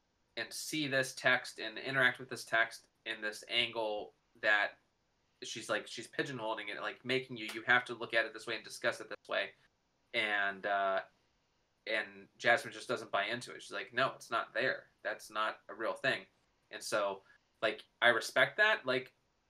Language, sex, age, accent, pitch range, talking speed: English, male, 20-39, American, 105-125 Hz, 190 wpm